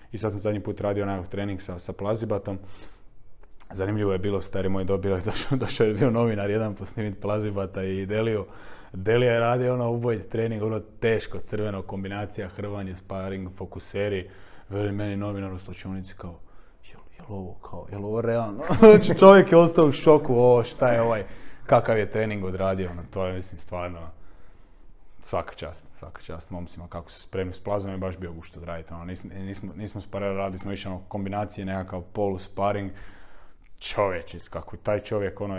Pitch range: 90-105 Hz